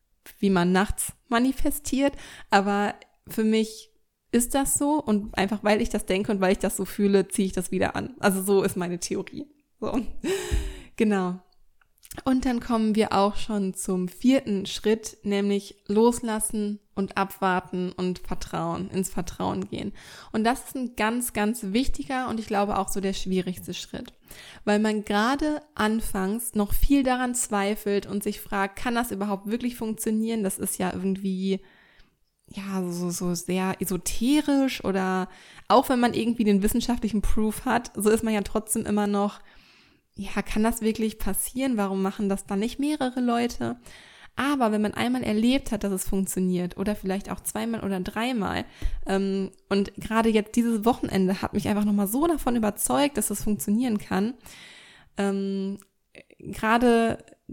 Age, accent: 20-39, German